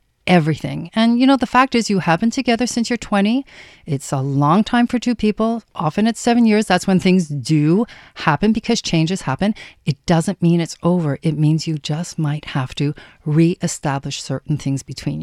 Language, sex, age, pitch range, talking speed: English, female, 40-59, 155-220 Hz, 195 wpm